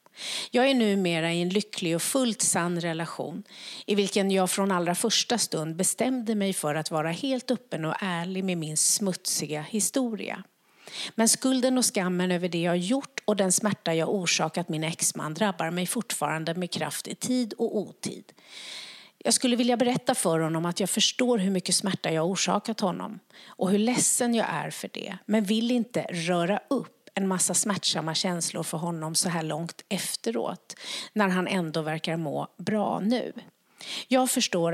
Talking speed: 175 wpm